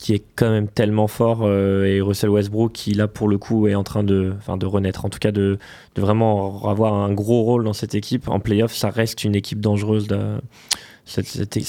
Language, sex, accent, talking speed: French, male, French, 220 wpm